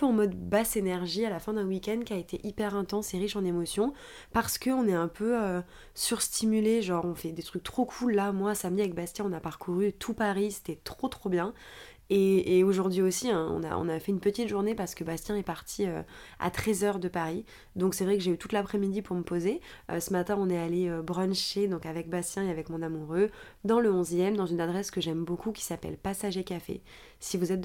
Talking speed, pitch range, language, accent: 245 wpm, 175-205 Hz, French, French